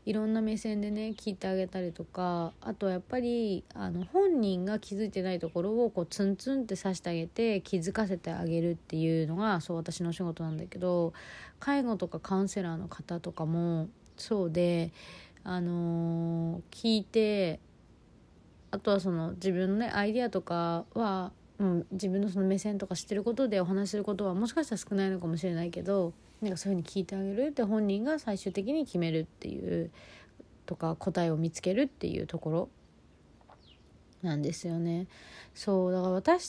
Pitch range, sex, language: 170-215 Hz, female, Japanese